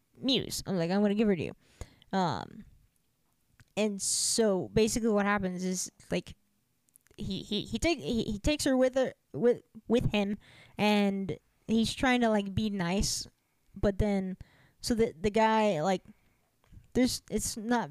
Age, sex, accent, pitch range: 20-39, female, American, 180-220 Hz